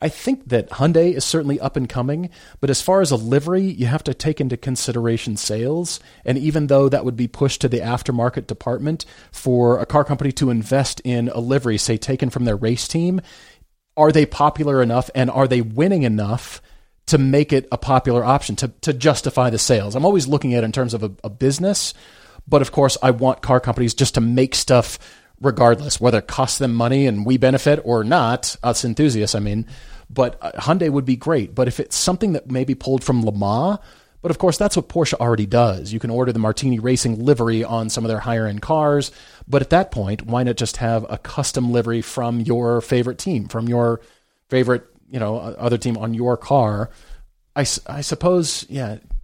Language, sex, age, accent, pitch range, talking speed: English, male, 30-49, American, 115-140 Hz, 205 wpm